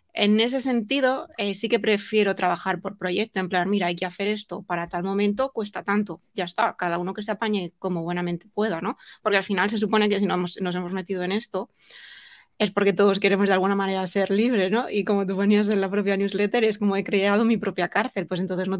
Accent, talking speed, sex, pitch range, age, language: Spanish, 230 wpm, female, 180-215 Hz, 20-39, Spanish